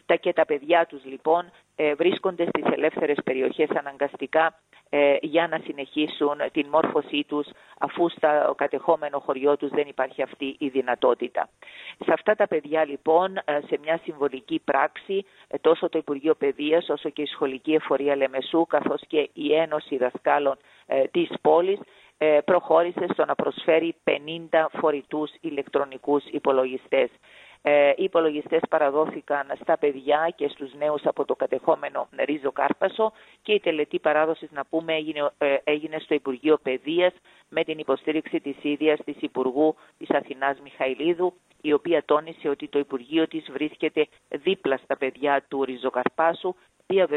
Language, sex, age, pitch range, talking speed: Greek, female, 40-59, 145-165 Hz, 140 wpm